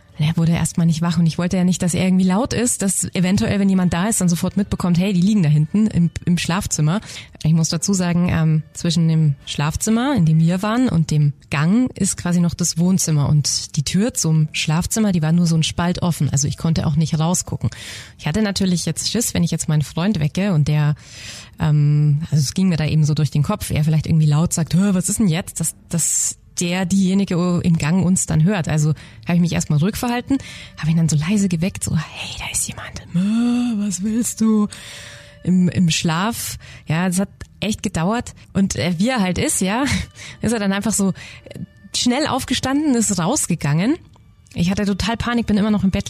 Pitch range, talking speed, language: 155-195 Hz, 215 wpm, German